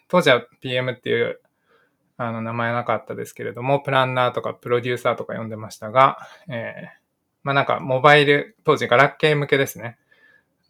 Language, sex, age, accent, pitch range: Japanese, male, 20-39, native, 120-155 Hz